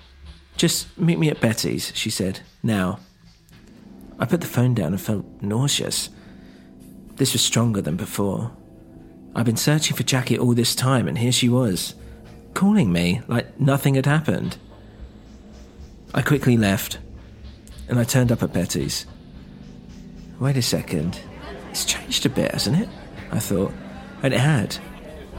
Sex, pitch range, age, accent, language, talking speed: male, 115-165 Hz, 40-59, British, English, 145 wpm